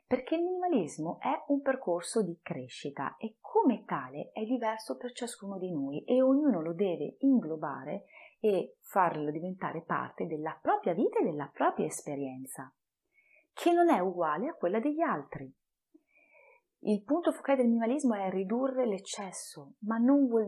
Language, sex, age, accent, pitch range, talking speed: Italian, female, 30-49, native, 160-235 Hz, 150 wpm